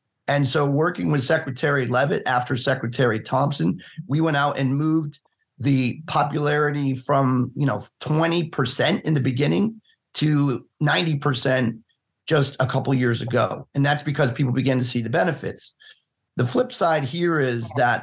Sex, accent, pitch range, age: male, American, 125-150 Hz, 40-59